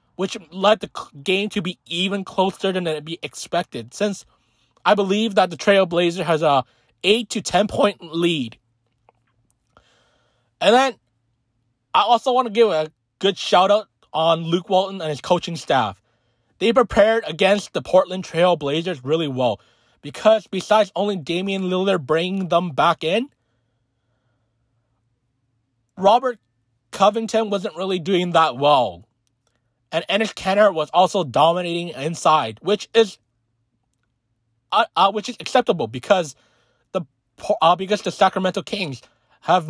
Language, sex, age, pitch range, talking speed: English, male, 20-39, 120-190 Hz, 135 wpm